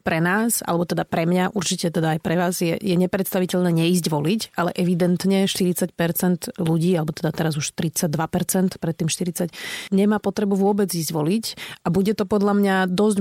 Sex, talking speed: female, 175 wpm